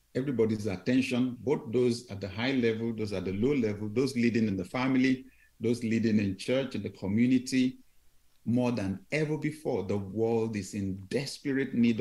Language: English